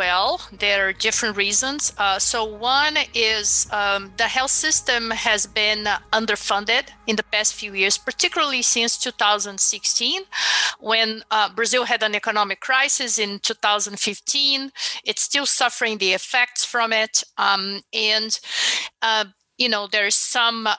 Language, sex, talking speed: English, female, 135 wpm